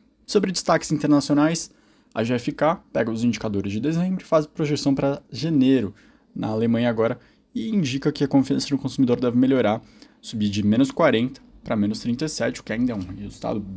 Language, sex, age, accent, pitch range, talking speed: Portuguese, male, 20-39, Brazilian, 110-140 Hz, 175 wpm